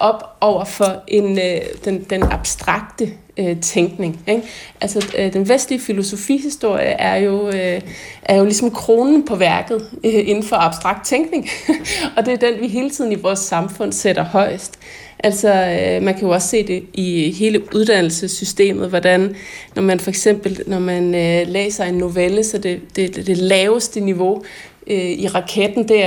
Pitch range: 185-230 Hz